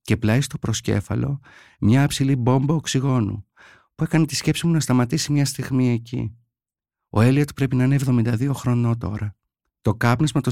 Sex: male